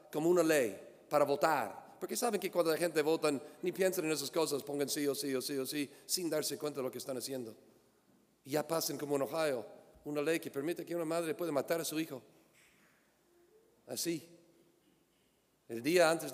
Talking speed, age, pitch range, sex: 200 wpm, 40-59, 130-170 Hz, male